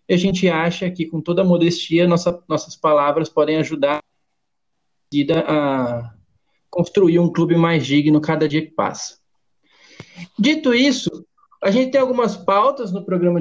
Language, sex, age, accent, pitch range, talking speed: Portuguese, male, 20-39, Brazilian, 165-215 Hz, 145 wpm